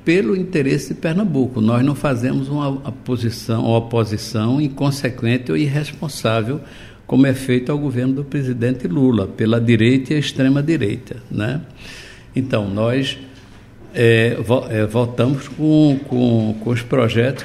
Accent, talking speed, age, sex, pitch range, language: Brazilian, 125 wpm, 60-79, male, 115-145 Hz, Portuguese